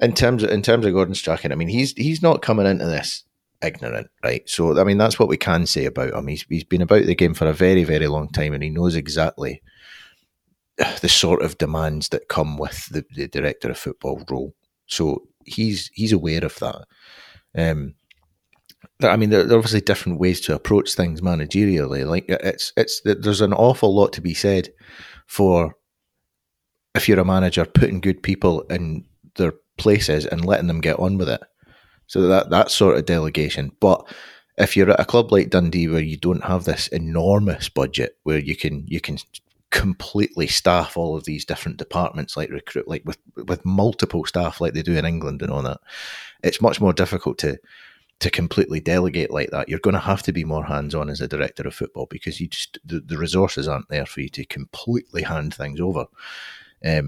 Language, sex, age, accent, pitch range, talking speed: English, male, 30-49, British, 80-100 Hz, 200 wpm